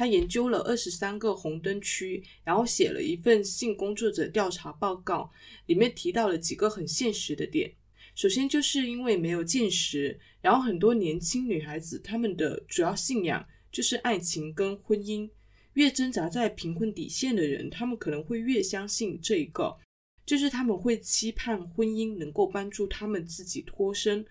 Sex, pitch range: female, 175-235 Hz